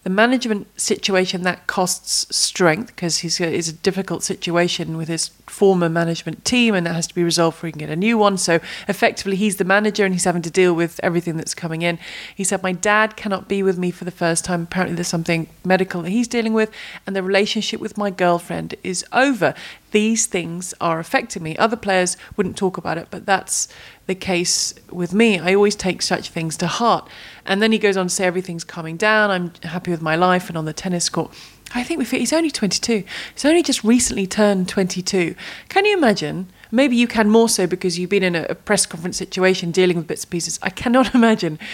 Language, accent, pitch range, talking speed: English, British, 175-215 Hz, 220 wpm